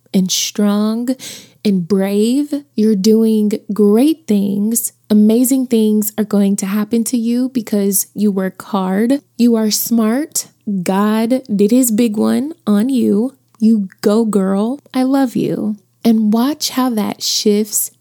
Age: 20-39